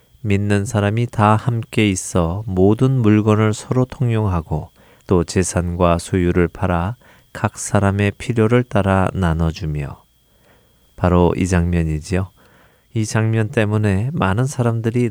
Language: Korean